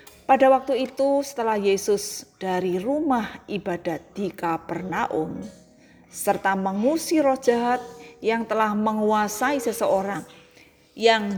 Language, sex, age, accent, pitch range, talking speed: Indonesian, female, 30-49, native, 185-240 Hz, 100 wpm